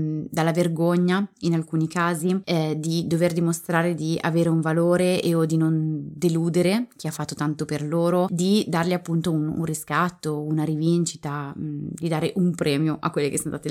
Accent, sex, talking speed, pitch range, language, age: native, female, 185 wpm, 155-185 Hz, Italian, 20-39